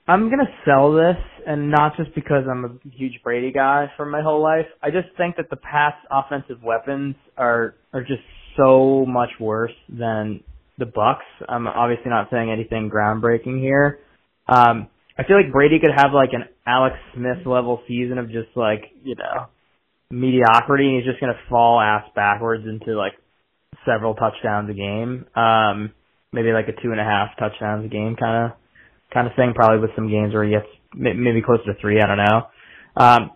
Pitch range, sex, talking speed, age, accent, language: 110-135 Hz, male, 185 wpm, 20-39, American, English